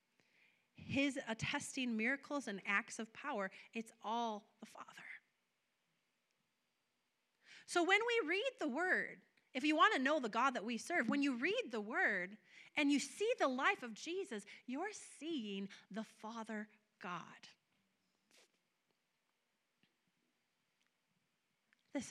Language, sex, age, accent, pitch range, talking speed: English, female, 30-49, American, 220-310 Hz, 120 wpm